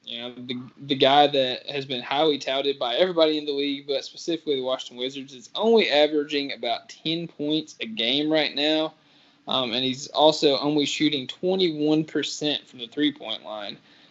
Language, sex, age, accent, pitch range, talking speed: English, male, 20-39, American, 120-150 Hz, 185 wpm